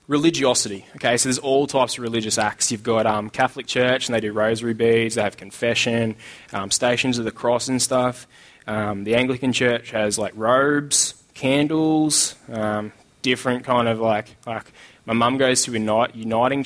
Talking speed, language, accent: 175 wpm, English, Australian